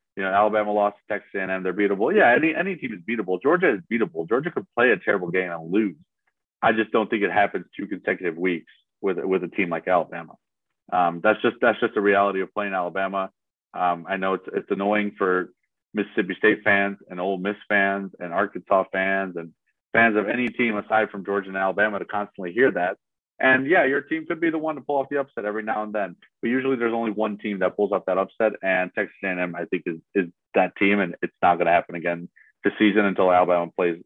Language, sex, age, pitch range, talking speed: English, male, 30-49, 95-115 Hz, 230 wpm